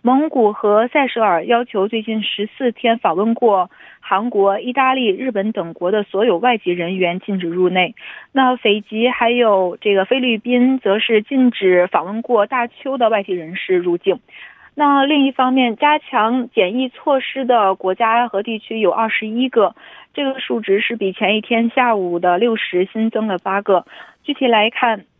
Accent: Chinese